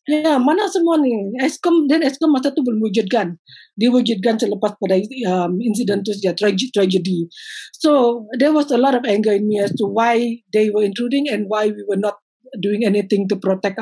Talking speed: 120 wpm